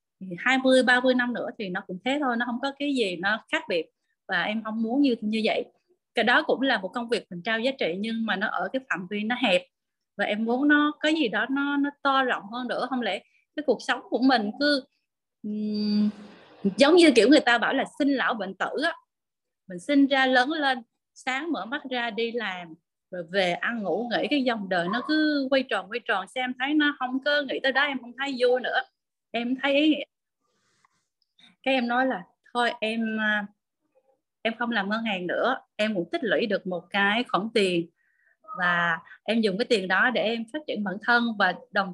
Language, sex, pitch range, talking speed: Vietnamese, female, 210-270 Hz, 220 wpm